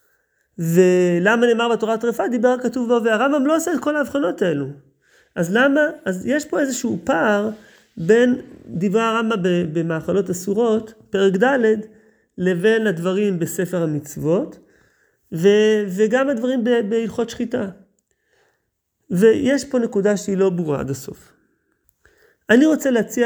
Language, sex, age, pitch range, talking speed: Hebrew, male, 30-49, 170-230 Hz, 120 wpm